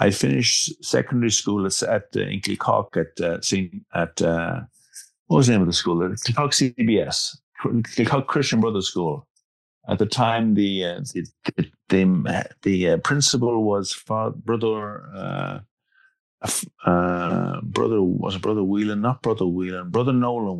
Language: English